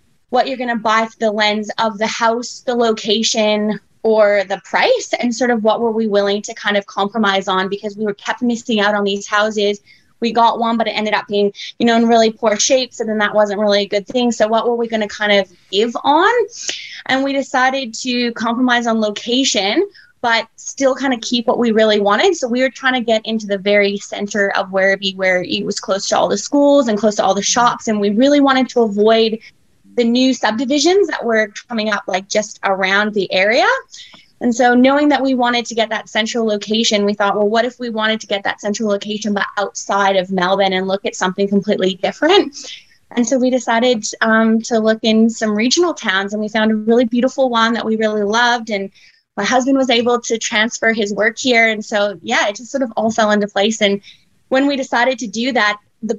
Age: 20-39